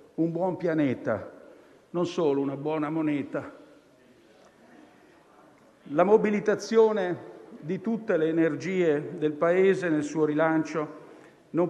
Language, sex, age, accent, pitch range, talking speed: Italian, male, 50-69, native, 155-185 Hz, 105 wpm